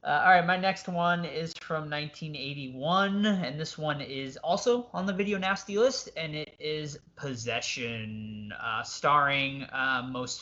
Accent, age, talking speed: American, 20-39, 150 wpm